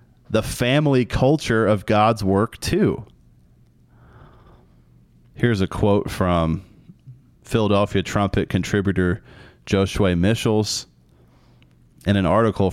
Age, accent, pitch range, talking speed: 30-49, American, 95-125 Hz, 90 wpm